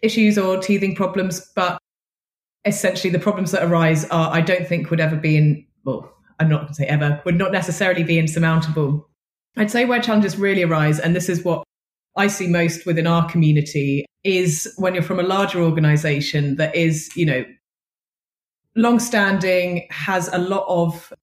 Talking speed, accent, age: 170 wpm, British, 30-49